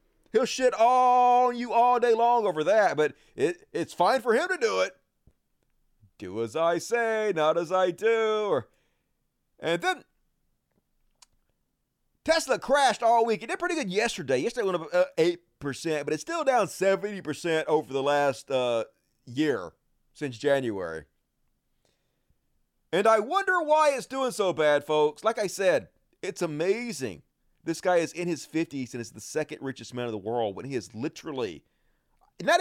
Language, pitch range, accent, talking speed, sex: English, 150-235 Hz, American, 160 wpm, male